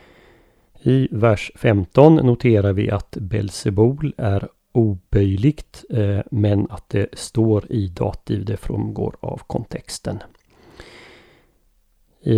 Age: 30-49